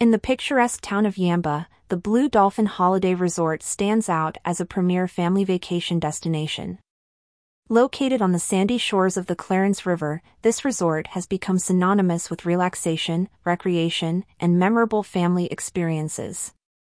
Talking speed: 140 wpm